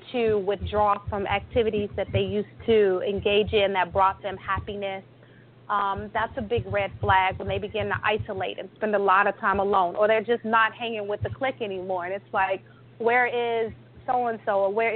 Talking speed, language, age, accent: 195 wpm, English, 30-49, American